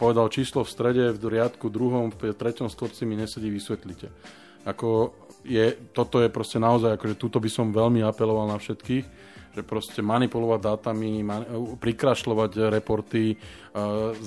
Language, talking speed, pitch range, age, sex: Slovak, 145 wpm, 105-115 Hz, 20-39, male